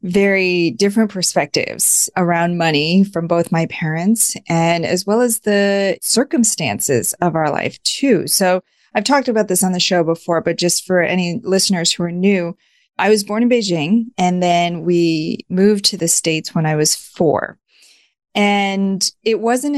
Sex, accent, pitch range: female, American, 170-205 Hz